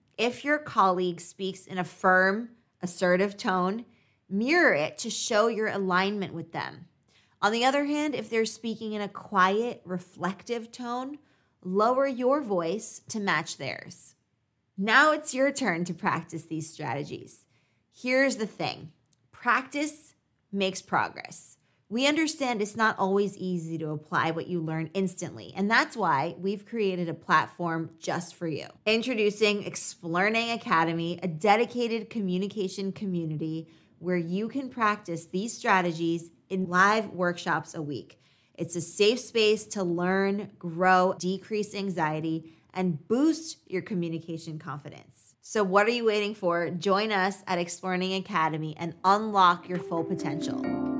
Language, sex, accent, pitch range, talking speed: English, female, American, 170-220 Hz, 140 wpm